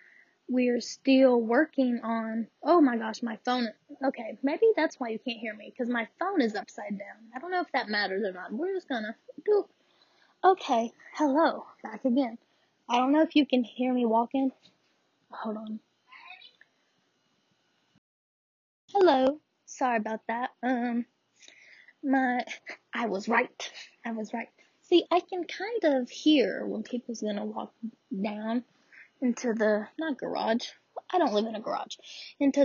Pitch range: 230-310 Hz